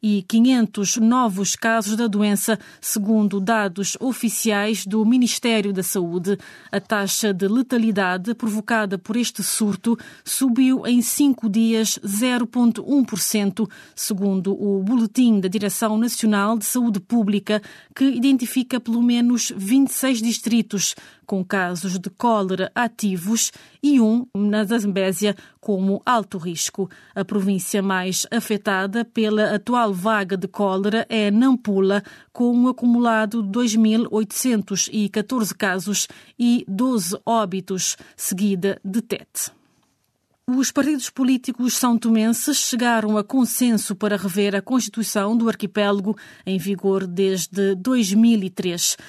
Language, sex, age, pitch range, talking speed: Portuguese, female, 20-39, 200-240 Hz, 115 wpm